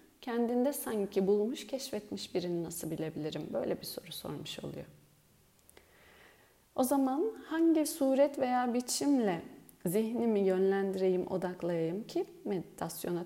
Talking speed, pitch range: 105 wpm, 180-235 Hz